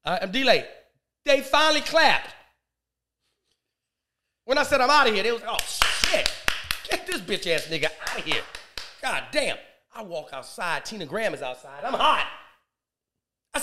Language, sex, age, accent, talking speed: English, male, 30-49, American, 165 wpm